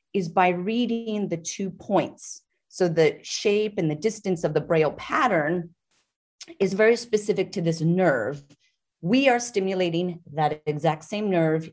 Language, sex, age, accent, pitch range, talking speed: English, female, 30-49, American, 165-210 Hz, 150 wpm